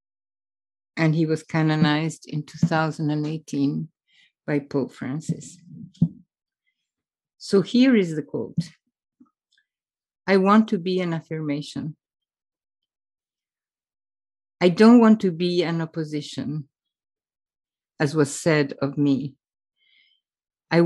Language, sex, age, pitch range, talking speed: English, female, 50-69, 155-205 Hz, 95 wpm